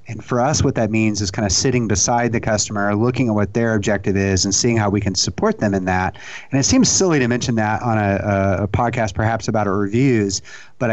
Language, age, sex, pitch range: English, 30-49, male, 105-125 Hz